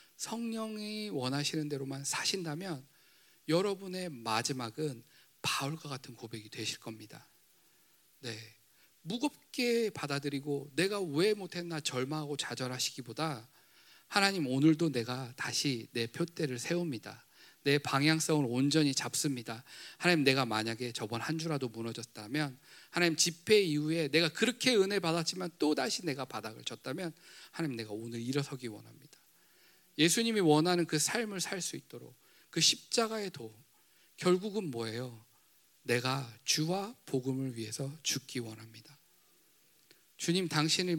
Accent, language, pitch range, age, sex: native, Korean, 125-175 Hz, 40-59, male